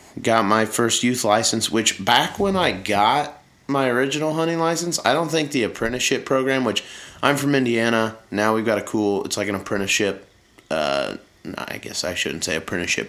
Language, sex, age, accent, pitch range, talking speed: English, male, 30-49, American, 95-120 Hz, 185 wpm